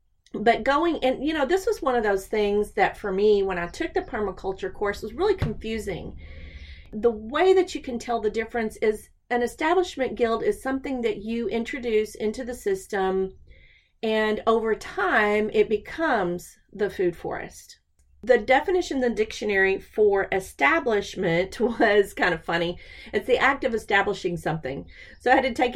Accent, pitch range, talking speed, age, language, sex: American, 195-255 Hz, 170 wpm, 40-59, English, female